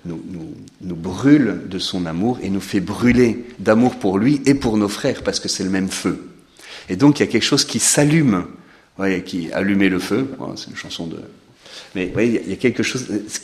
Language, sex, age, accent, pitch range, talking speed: French, male, 40-59, French, 95-130 Hz, 225 wpm